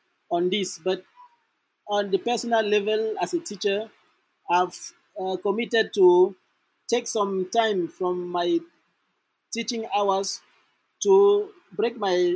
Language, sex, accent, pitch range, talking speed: English, male, Nigerian, 185-230 Hz, 120 wpm